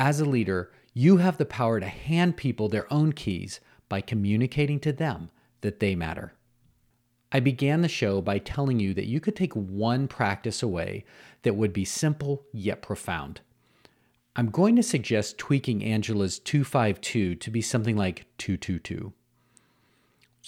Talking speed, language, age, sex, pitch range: 150 wpm, English, 40-59, male, 105-130 Hz